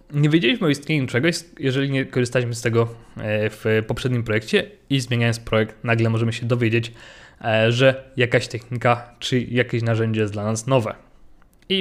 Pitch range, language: 110-130 Hz, Polish